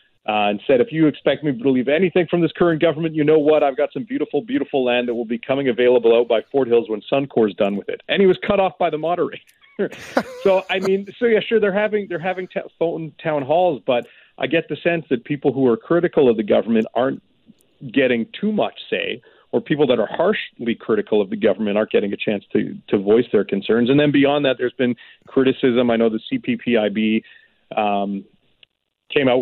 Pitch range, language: 115-165 Hz, English